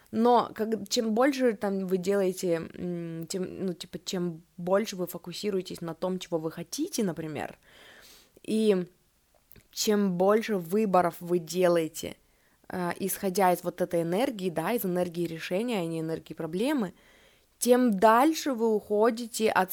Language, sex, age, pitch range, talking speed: Russian, female, 20-39, 175-225 Hz, 135 wpm